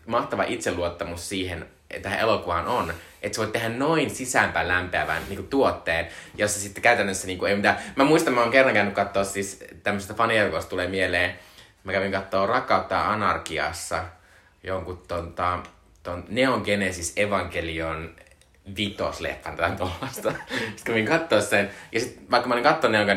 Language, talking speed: Finnish, 150 wpm